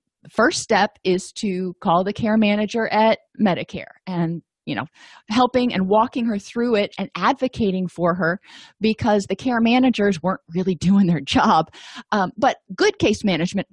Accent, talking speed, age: American, 165 wpm, 40-59